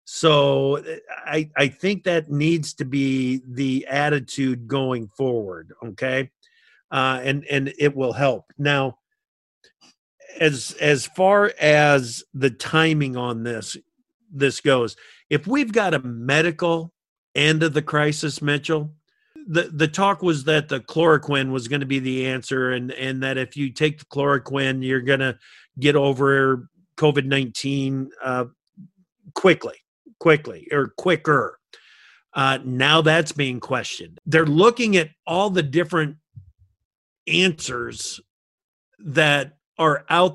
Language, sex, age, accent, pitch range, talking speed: English, male, 50-69, American, 135-165 Hz, 130 wpm